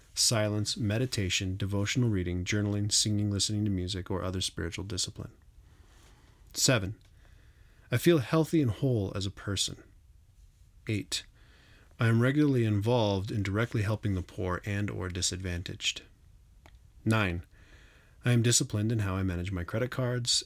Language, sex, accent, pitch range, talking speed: English, male, American, 95-120 Hz, 135 wpm